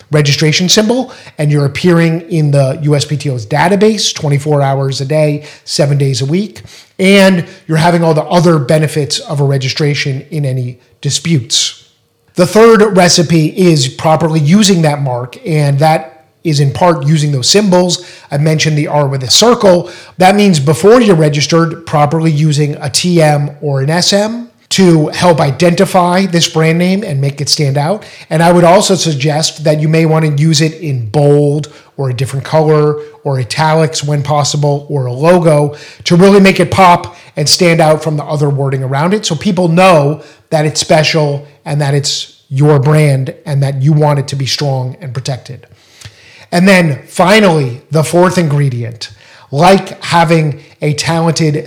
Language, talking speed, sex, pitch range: English, 170 wpm, male, 145-175 Hz